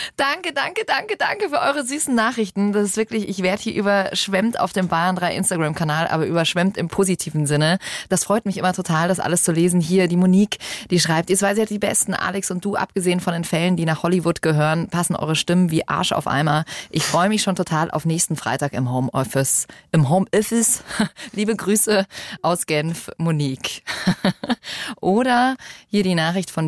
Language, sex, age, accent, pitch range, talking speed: German, female, 20-39, German, 165-210 Hz, 190 wpm